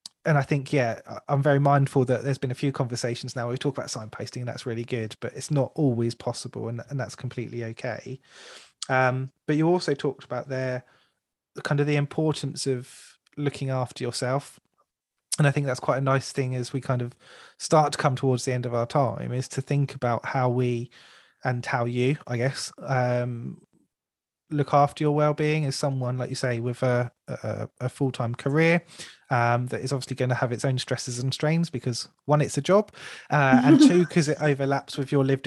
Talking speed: 205 wpm